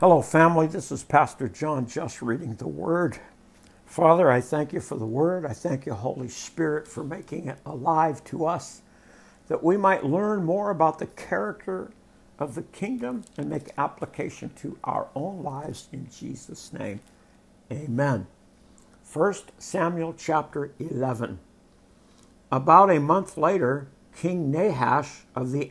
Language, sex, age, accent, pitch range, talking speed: English, male, 60-79, American, 135-180 Hz, 145 wpm